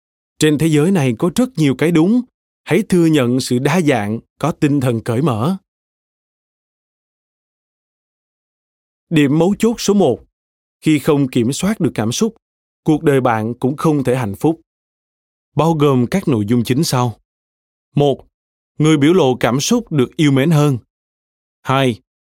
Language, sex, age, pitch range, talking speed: Vietnamese, male, 20-39, 115-165 Hz, 155 wpm